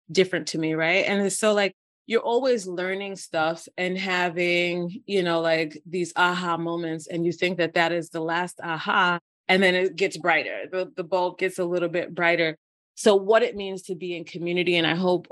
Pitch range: 165-185 Hz